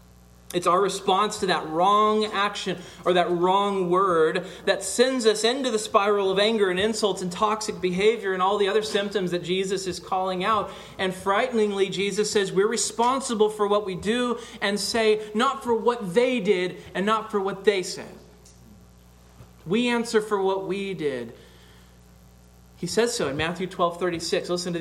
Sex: male